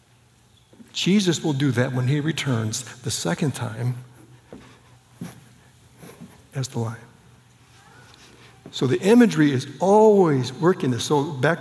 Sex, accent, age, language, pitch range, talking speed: male, American, 60-79, English, 125-155 Hz, 115 wpm